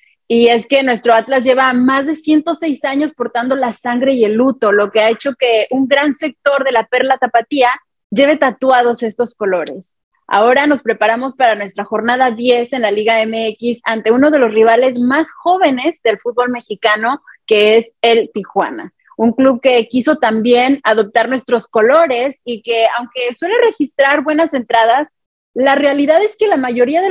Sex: female